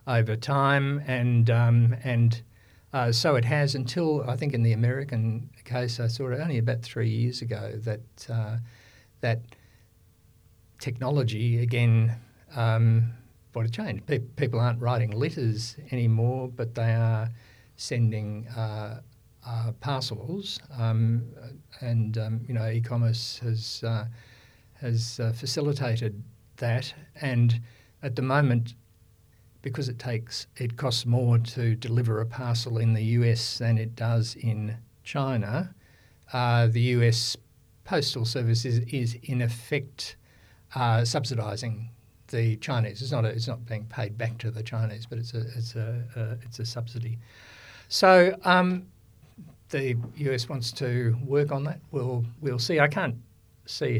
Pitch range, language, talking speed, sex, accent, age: 115-125 Hz, English, 140 wpm, male, Australian, 50-69